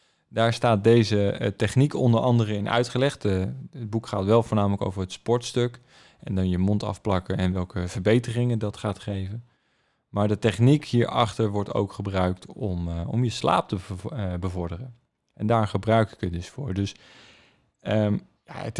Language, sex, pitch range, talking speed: Dutch, male, 95-115 Hz, 170 wpm